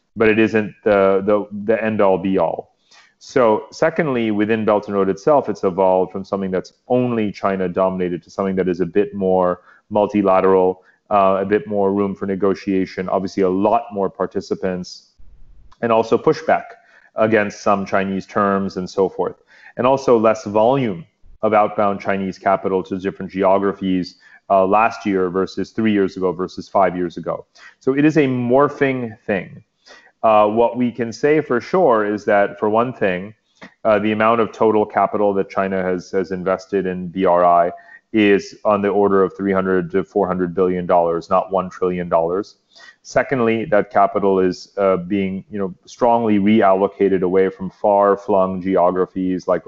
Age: 30-49